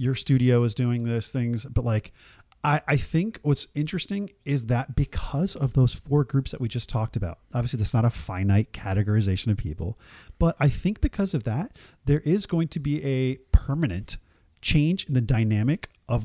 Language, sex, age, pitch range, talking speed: English, male, 30-49, 120-170 Hz, 190 wpm